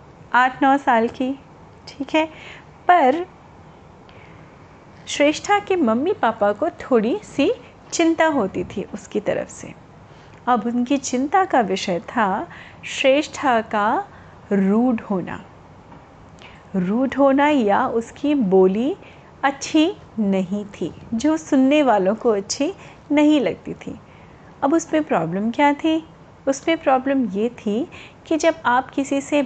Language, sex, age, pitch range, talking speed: Hindi, female, 30-49, 215-310 Hz, 120 wpm